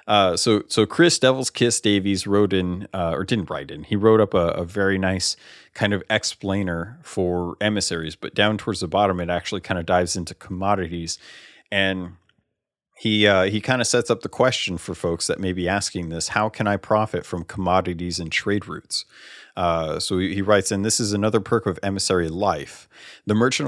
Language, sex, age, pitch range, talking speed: English, male, 30-49, 90-110 Hz, 200 wpm